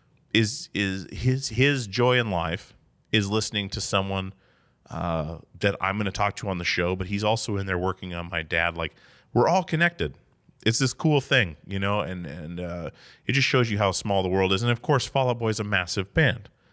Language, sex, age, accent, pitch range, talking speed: English, male, 30-49, American, 90-120 Hz, 220 wpm